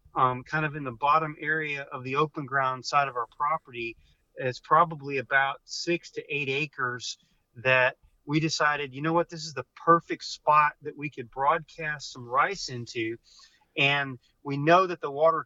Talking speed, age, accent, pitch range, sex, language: 180 wpm, 40-59, American, 135-160 Hz, male, English